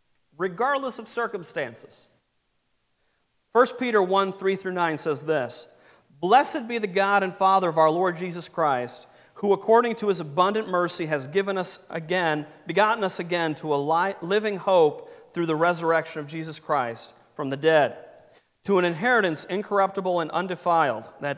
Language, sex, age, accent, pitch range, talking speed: English, male, 40-59, American, 150-195 Hz, 155 wpm